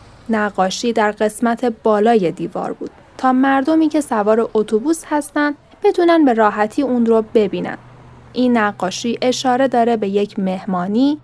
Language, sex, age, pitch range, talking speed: Persian, female, 10-29, 210-270 Hz, 135 wpm